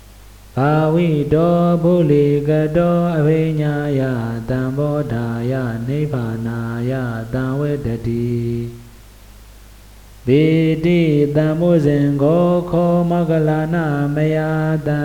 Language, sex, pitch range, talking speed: Vietnamese, male, 115-160 Hz, 75 wpm